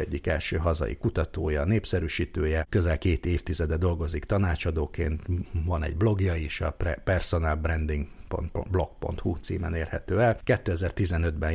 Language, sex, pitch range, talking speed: Hungarian, male, 80-95 Hz, 105 wpm